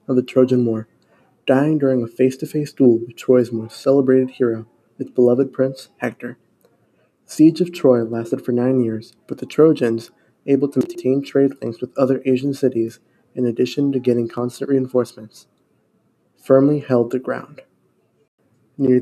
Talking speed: 155 wpm